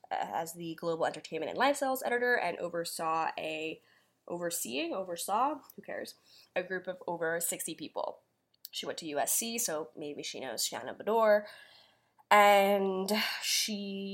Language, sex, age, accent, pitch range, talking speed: English, female, 10-29, American, 165-210 Hz, 140 wpm